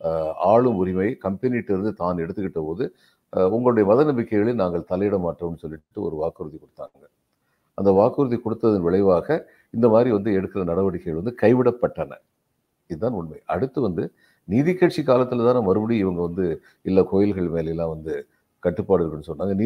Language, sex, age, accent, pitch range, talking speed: Tamil, male, 50-69, native, 85-115 Hz, 130 wpm